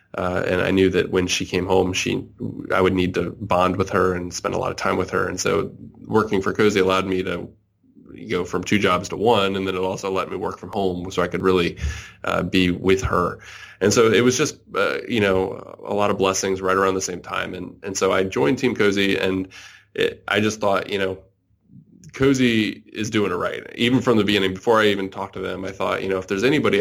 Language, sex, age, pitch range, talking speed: English, male, 20-39, 95-105 Hz, 250 wpm